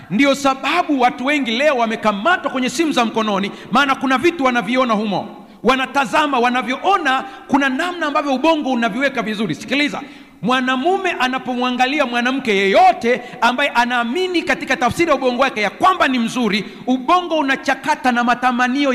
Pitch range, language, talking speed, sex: 240-295 Hz, Swahili, 135 wpm, male